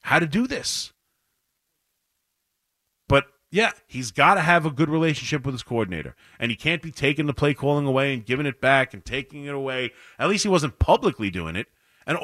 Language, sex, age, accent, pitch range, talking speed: English, male, 30-49, American, 115-160 Hz, 200 wpm